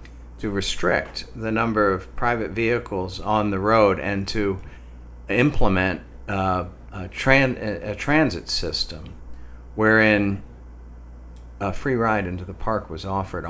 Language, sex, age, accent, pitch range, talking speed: English, male, 50-69, American, 80-115 Hz, 130 wpm